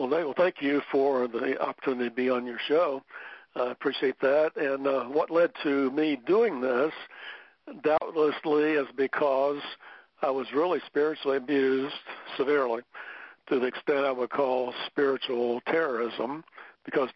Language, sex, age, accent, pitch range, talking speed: English, male, 60-79, American, 130-150 Hz, 140 wpm